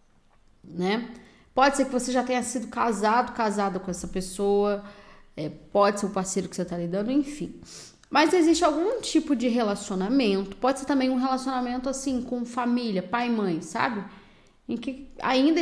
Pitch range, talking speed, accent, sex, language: 225-290 Hz, 170 wpm, Brazilian, female, Portuguese